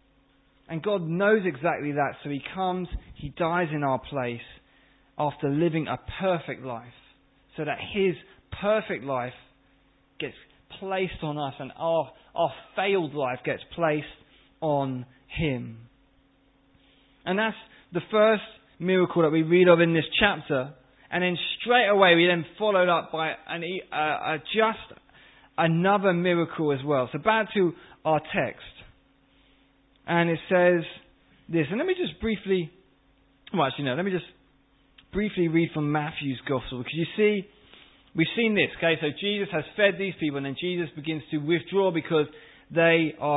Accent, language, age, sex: British, English, 20-39, male